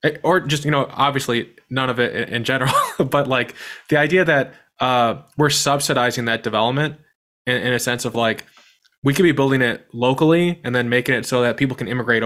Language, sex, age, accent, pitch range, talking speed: English, male, 20-39, American, 115-140 Hz, 200 wpm